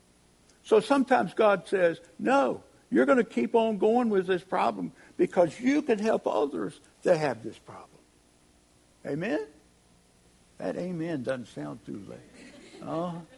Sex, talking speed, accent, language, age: male, 140 wpm, American, English, 60-79